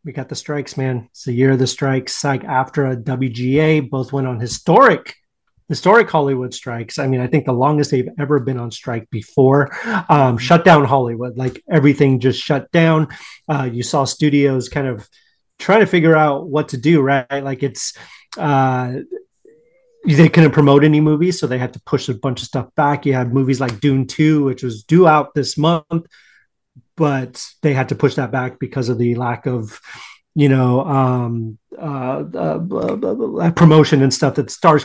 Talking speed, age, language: 195 wpm, 30-49, English